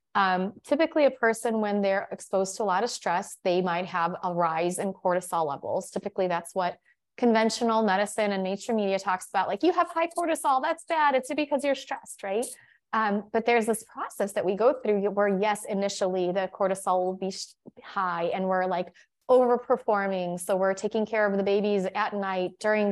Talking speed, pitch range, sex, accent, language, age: 190 wpm, 185-225 Hz, female, American, English, 30-49